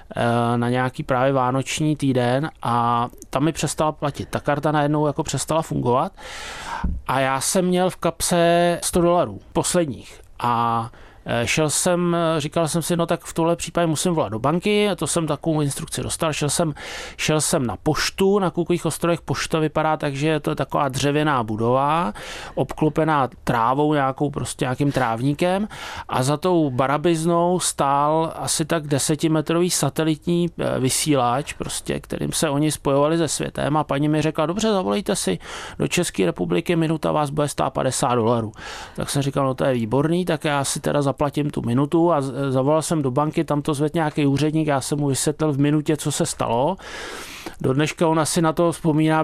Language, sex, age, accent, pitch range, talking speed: Czech, male, 30-49, native, 135-165 Hz, 170 wpm